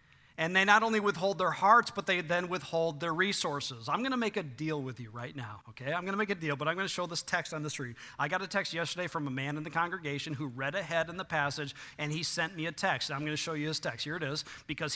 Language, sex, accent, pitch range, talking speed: English, male, American, 135-180 Hz, 295 wpm